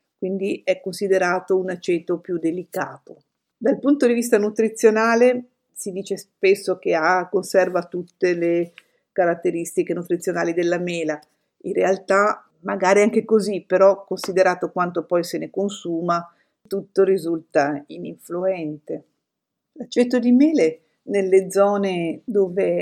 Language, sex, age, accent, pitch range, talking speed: Italian, female, 50-69, native, 165-195 Hz, 115 wpm